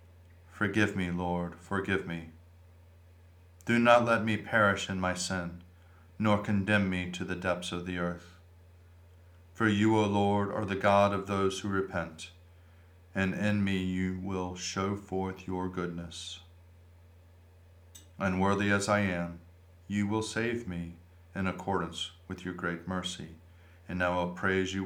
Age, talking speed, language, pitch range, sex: 40-59, 145 wpm, English, 90-110 Hz, male